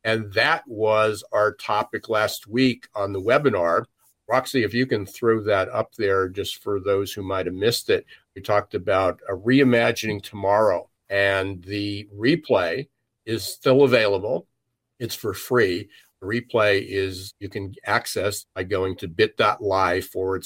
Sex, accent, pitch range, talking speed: male, American, 95-115 Hz, 150 wpm